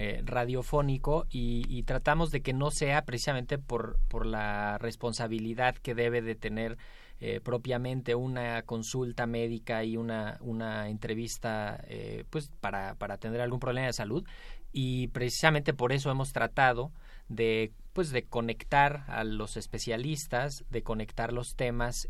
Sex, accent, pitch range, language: male, Mexican, 110-130 Hz, Spanish